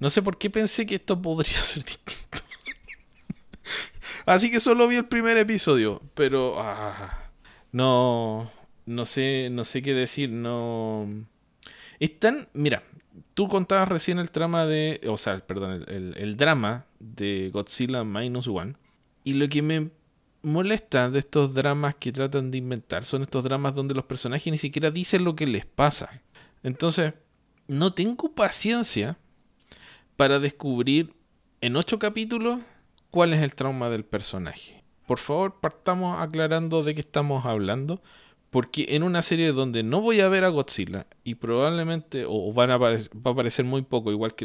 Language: English